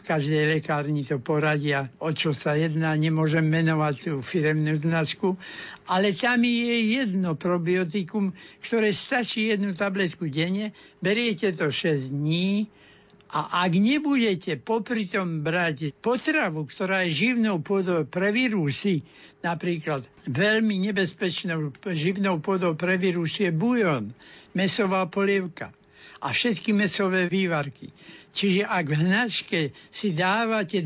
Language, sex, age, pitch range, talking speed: Slovak, male, 60-79, 155-200 Hz, 115 wpm